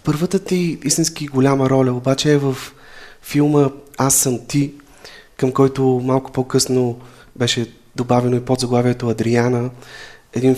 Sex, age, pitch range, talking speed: male, 30-49, 115-130 Hz, 130 wpm